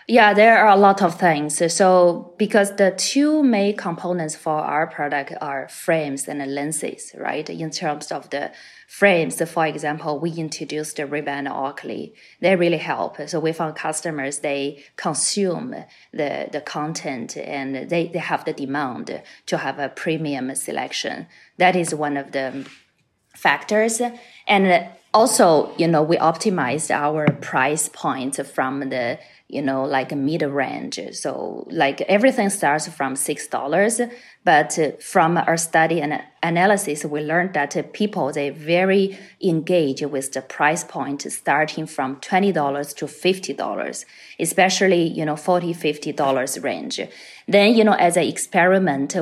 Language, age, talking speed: English, 20-39, 150 wpm